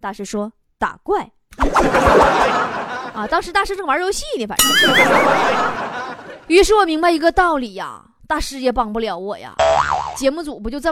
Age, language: 20-39, Chinese